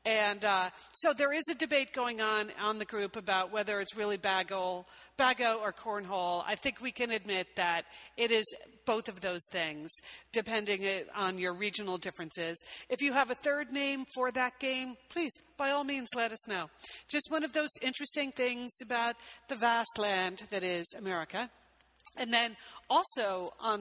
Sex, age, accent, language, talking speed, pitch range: female, 50-69, American, English, 175 wpm, 190-245 Hz